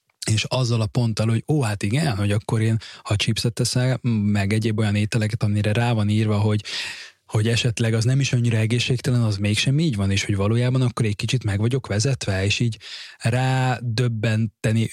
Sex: male